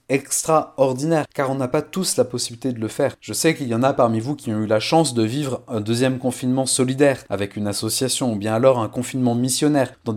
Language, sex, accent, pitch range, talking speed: French, male, French, 110-145 Hz, 235 wpm